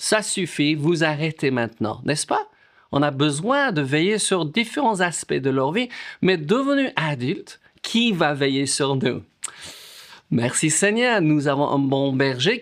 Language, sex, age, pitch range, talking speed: French, male, 50-69, 145-210 Hz, 155 wpm